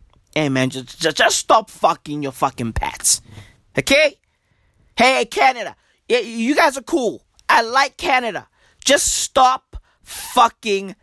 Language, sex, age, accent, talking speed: English, male, 20-39, American, 125 wpm